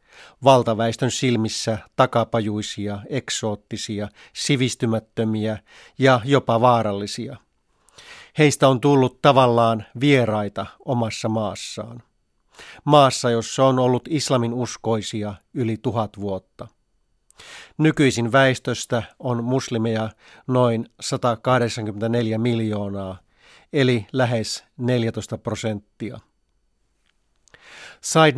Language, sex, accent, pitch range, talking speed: Finnish, male, native, 110-125 Hz, 75 wpm